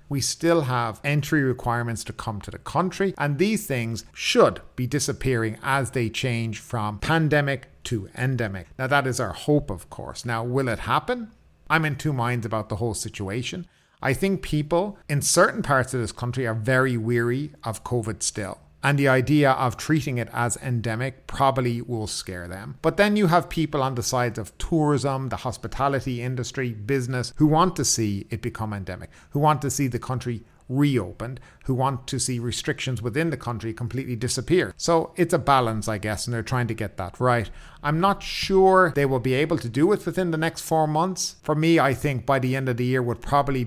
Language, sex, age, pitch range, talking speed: English, male, 50-69, 115-150 Hz, 200 wpm